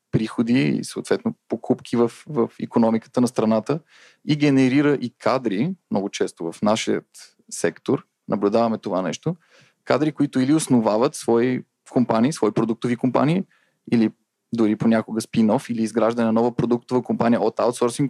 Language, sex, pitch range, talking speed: Bulgarian, male, 115-135 Hz, 140 wpm